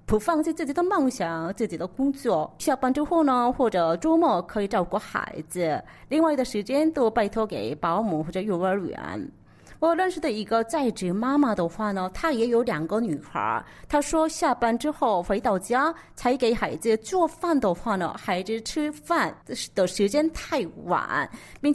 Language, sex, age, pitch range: Chinese, female, 30-49, 190-280 Hz